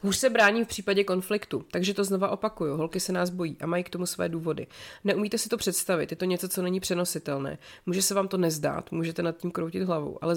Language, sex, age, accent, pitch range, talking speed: Czech, female, 30-49, native, 160-180 Hz, 235 wpm